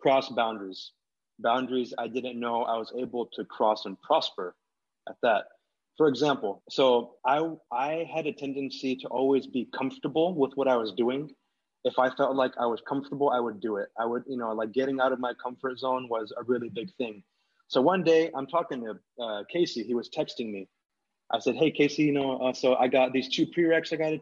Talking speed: 215 wpm